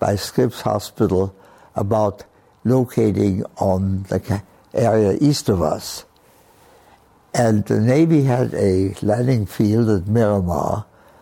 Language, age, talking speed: English, 60-79, 105 wpm